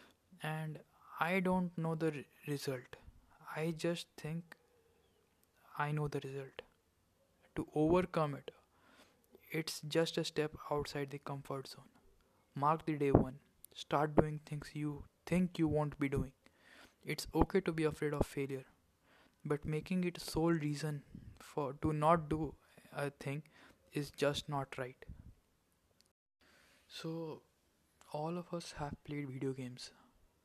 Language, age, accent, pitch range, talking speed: English, 20-39, Indian, 130-160 Hz, 135 wpm